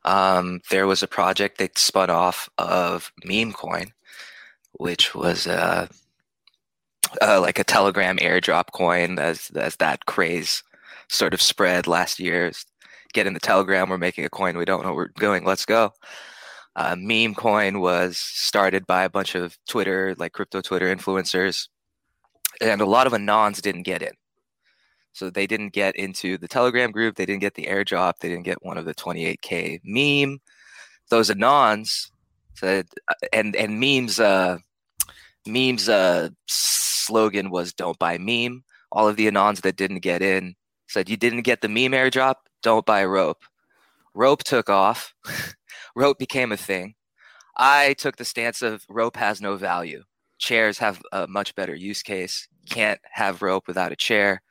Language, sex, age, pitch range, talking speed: English, male, 20-39, 95-115 Hz, 165 wpm